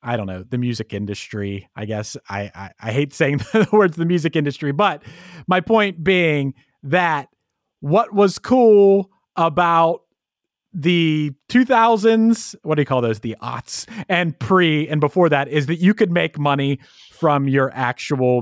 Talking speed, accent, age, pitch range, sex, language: 165 wpm, American, 30-49, 130-180 Hz, male, English